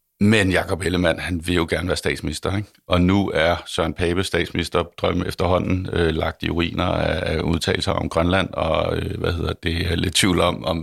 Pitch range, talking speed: 85-100 Hz, 205 wpm